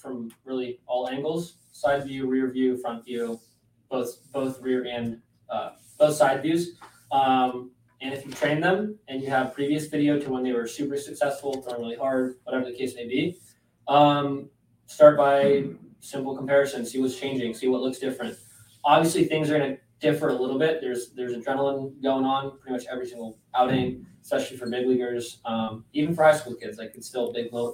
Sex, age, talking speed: male, 20-39, 195 wpm